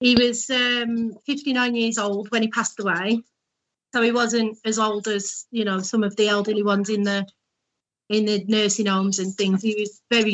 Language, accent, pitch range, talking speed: English, British, 200-225 Hz, 195 wpm